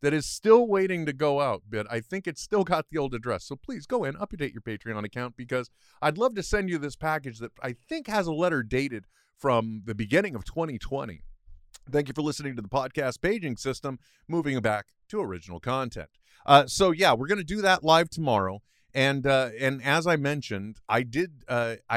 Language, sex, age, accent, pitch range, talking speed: English, male, 30-49, American, 110-150 Hz, 210 wpm